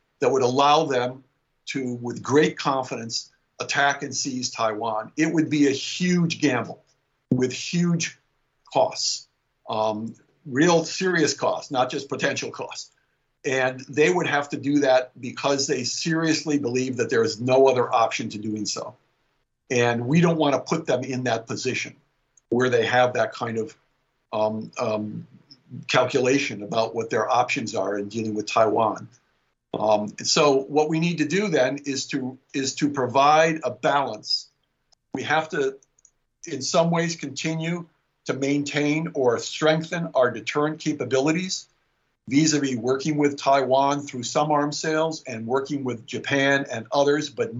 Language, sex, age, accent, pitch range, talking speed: English, male, 50-69, American, 125-150 Hz, 150 wpm